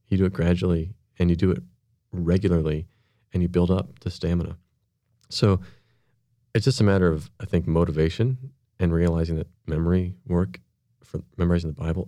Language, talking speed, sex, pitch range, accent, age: English, 165 wpm, male, 85-105 Hz, American, 30-49